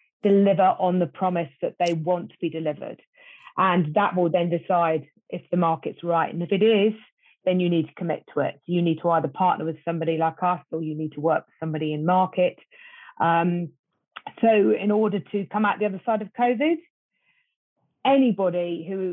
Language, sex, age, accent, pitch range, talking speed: English, female, 30-49, British, 165-200 Hz, 195 wpm